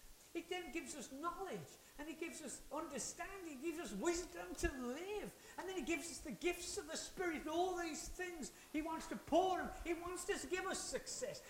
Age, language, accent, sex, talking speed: 50-69, English, British, male, 220 wpm